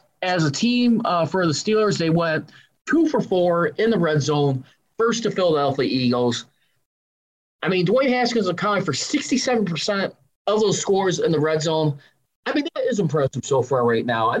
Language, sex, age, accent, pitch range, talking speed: English, male, 20-39, American, 140-215 Hz, 185 wpm